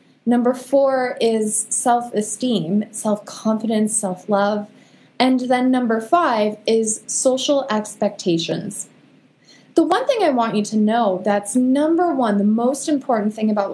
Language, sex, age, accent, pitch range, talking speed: English, female, 20-39, American, 210-260 Hz, 125 wpm